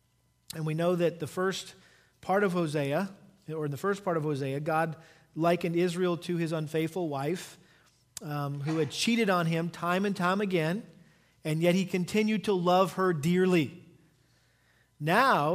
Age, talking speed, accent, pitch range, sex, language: 40-59, 160 wpm, American, 160-195 Hz, male, English